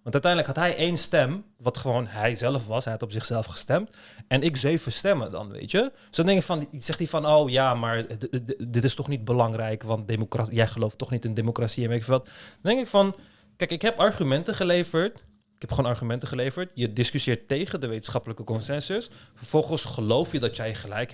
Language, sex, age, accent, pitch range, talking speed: Dutch, male, 30-49, Dutch, 115-175 Hz, 220 wpm